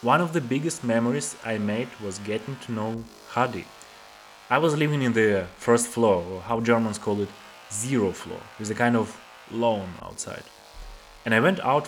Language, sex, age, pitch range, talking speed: English, male, 20-39, 95-120 Hz, 180 wpm